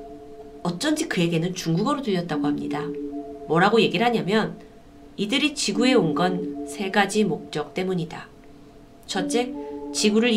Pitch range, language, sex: 145-210 Hz, Korean, female